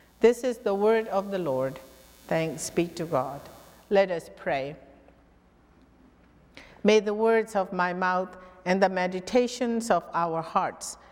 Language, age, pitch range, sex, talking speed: English, 50-69, 170-220 Hz, female, 140 wpm